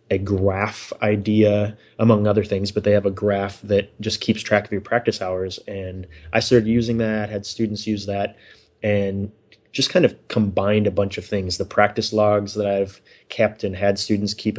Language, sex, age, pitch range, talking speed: English, male, 20-39, 100-110 Hz, 195 wpm